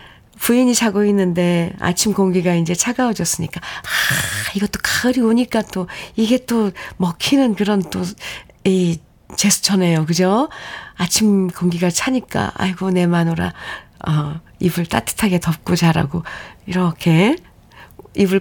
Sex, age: female, 40-59